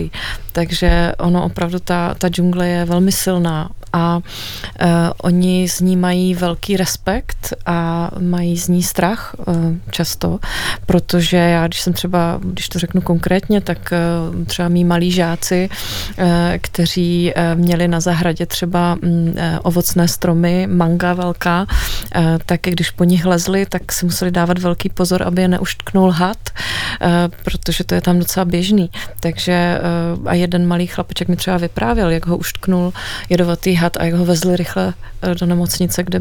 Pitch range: 170-180 Hz